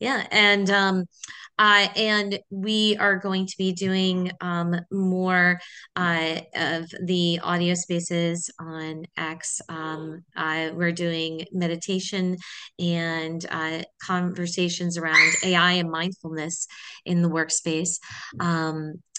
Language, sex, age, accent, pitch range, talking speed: English, female, 30-49, American, 160-185 Hz, 115 wpm